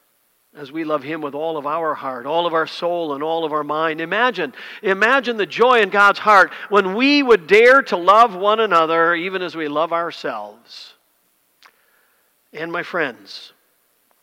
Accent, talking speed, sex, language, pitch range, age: American, 175 wpm, male, English, 155-205 Hz, 50-69